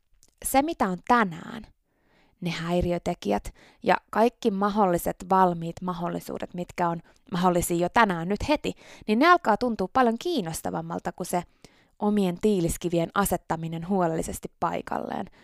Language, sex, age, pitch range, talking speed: Finnish, female, 20-39, 170-215 Hz, 120 wpm